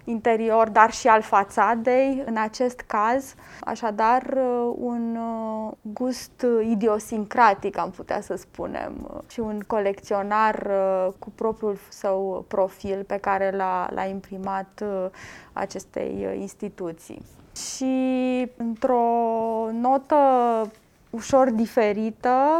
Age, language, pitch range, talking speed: 20-39, Romanian, 205-255 Hz, 90 wpm